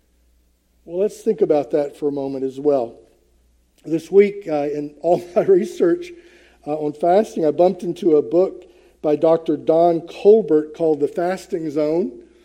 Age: 50-69